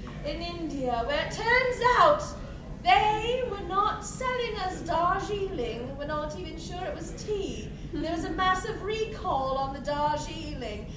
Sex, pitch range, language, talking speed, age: female, 280-415 Hz, English, 150 wpm, 30-49